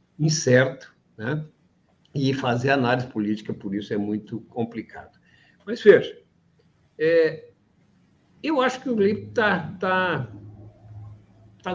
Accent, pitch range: Brazilian, 105-175 Hz